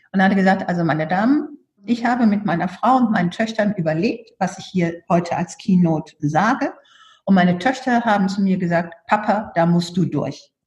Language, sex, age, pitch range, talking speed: German, female, 50-69, 180-240 Hz, 195 wpm